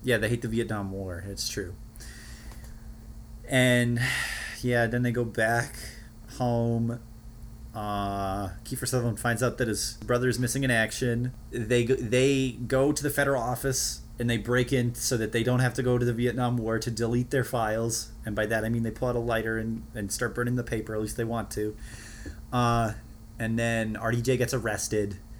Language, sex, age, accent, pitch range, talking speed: English, male, 30-49, American, 110-125 Hz, 190 wpm